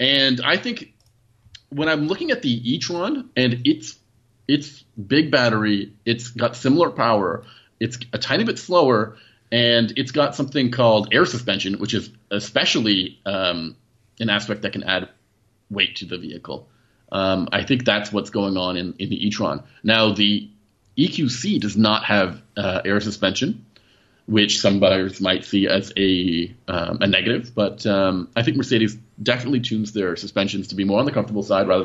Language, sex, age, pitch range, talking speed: English, male, 30-49, 100-120 Hz, 170 wpm